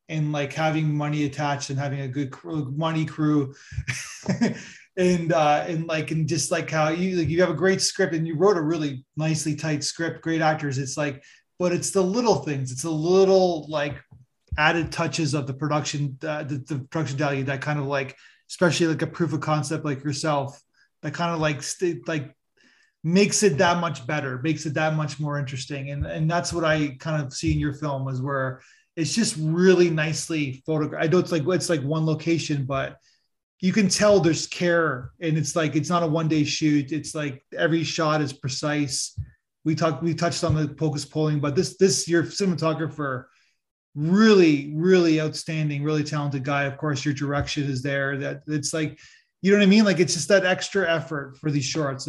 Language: English